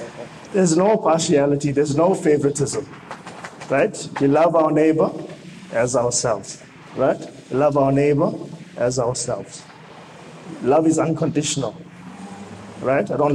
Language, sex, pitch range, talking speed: English, male, 145-175 Hz, 110 wpm